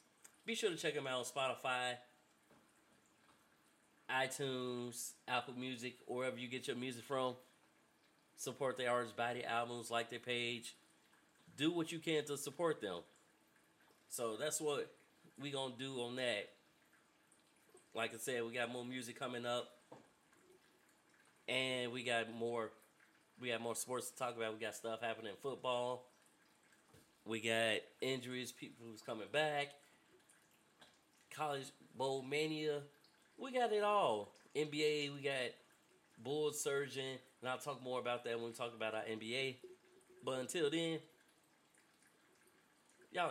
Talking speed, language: 145 wpm, English